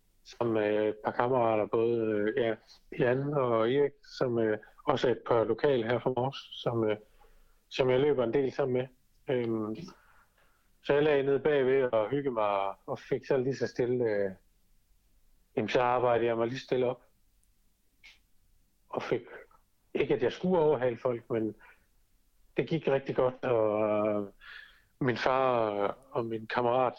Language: Danish